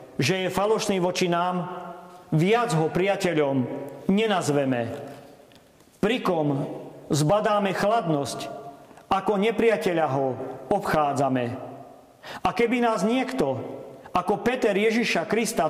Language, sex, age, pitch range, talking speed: Slovak, male, 40-59, 145-195 Hz, 90 wpm